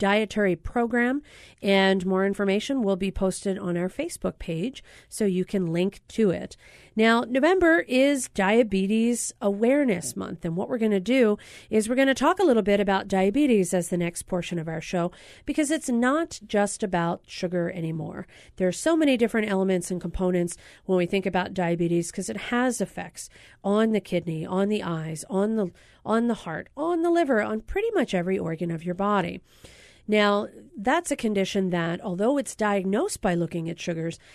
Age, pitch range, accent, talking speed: 40-59, 180-230 Hz, American, 185 wpm